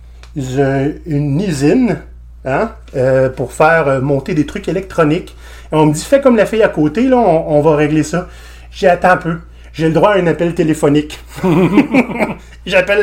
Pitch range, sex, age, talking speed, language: 130-180 Hz, male, 30-49, 170 wpm, French